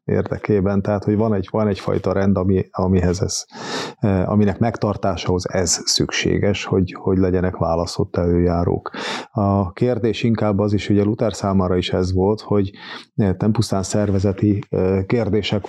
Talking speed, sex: 140 wpm, male